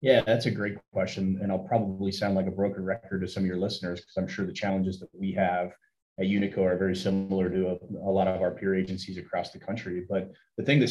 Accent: American